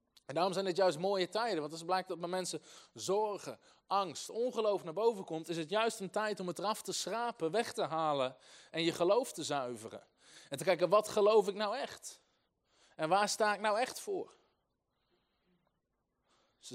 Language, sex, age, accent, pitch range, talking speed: Dutch, male, 20-39, Dutch, 160-215 Hz, 195 wpm